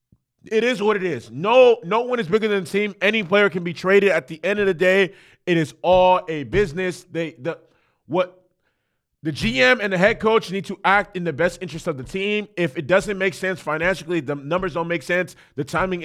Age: 20-39